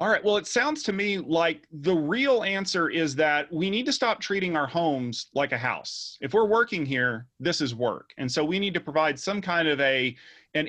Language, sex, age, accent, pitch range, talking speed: English, male, 40-59, American, 125-180 Hz, 230 wpm